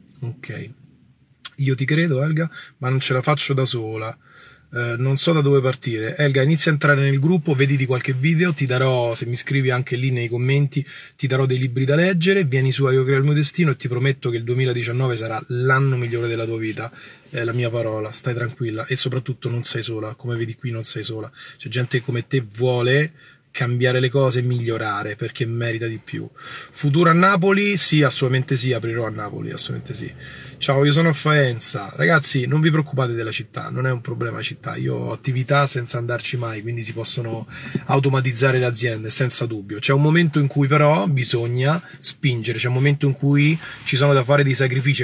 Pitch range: 120-140 Hz